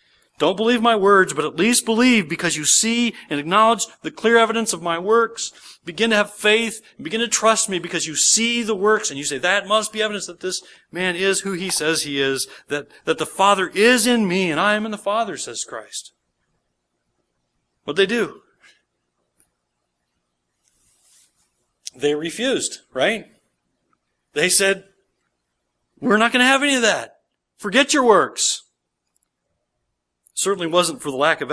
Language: English